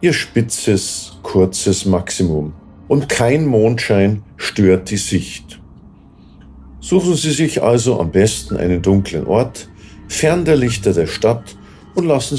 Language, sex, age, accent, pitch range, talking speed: German, male, 50-69, German, 95-115 Hz, 125 wpm